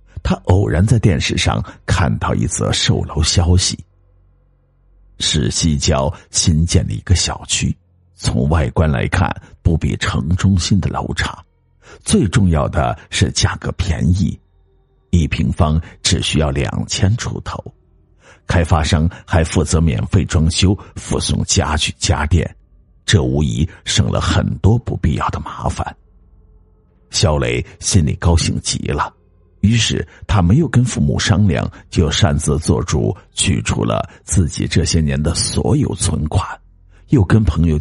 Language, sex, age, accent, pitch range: Chinese, male, 50-69, native, 80-100 Hz